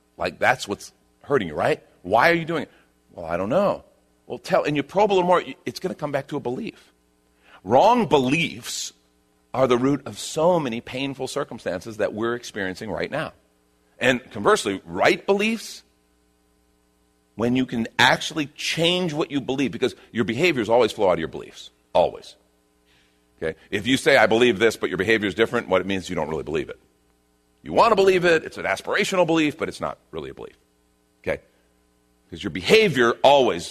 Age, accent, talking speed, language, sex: 40-59, American, 195 wpm, English, male